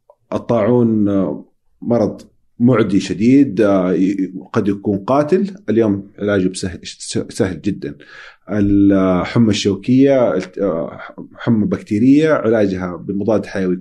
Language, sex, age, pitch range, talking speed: Arabic, male, 40-59, 95-120 Hz, 80 wpm